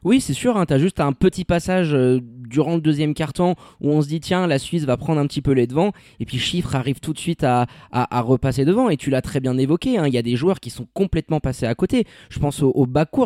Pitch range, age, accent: 135-190 Hz, 20-39, French